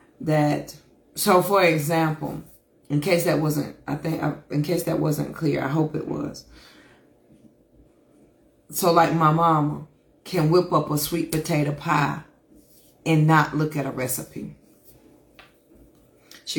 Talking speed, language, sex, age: 135 wpm, English, female, 30-49